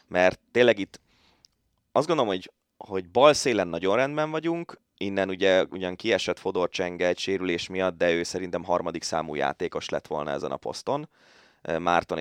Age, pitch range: 20-39, 90-125 Hz